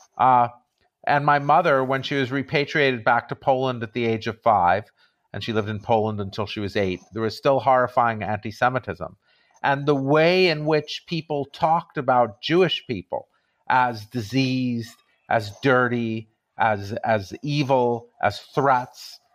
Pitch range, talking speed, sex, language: 120-155 Hz, 150 wpm, male, English